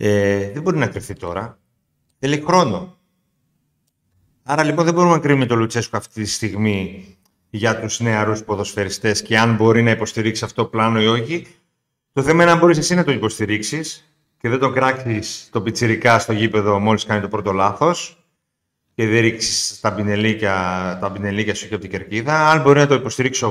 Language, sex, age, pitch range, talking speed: Greek, male, 40-59, 105-150 Hz, 180 wpm